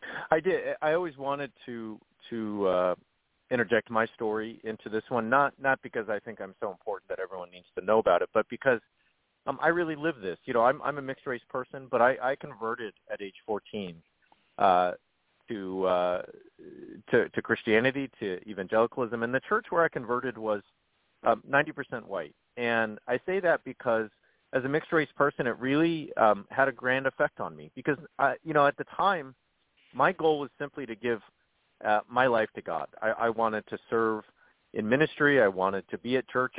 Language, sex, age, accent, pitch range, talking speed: English, male, 40-59, American, 110-140 Hz, 195 wpm